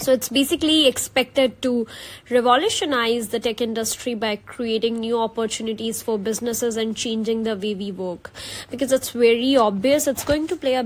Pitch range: 225-255 Hz